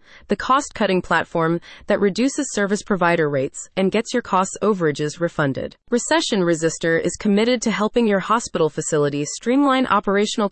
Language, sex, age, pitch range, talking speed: English, female, 30-49, 170-225 Hz, 145 wpm